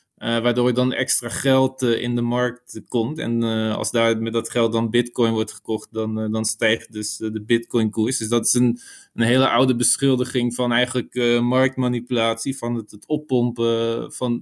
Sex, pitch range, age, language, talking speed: male, 120-135 Hz, 20-39, Dutch, 205 wpm